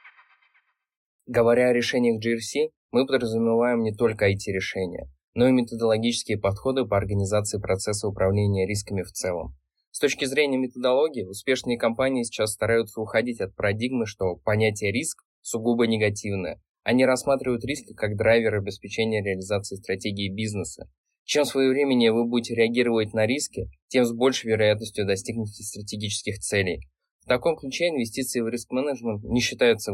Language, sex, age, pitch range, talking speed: Russian, male, 20-39, 100-120 Hz, 135 wpm